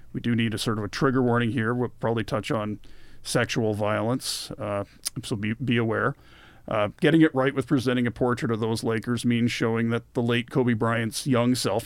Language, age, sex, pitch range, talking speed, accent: English, 40-59, male, 110-130 Hz, 205 wpm, American